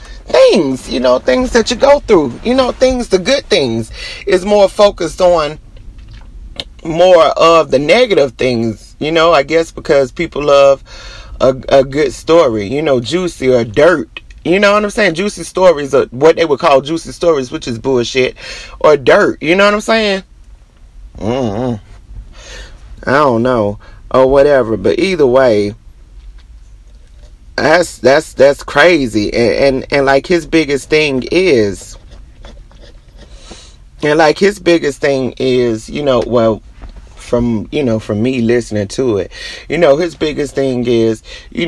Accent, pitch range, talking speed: American, 115-165 Hz, 155 wpm